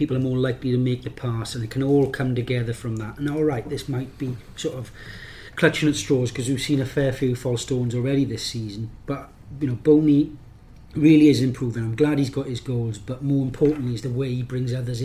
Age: 40-59